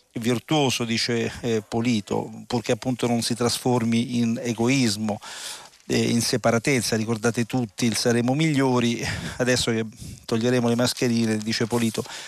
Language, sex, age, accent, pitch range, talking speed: Italian, male, 40-59, native, 115-125 Hz, 125 wpm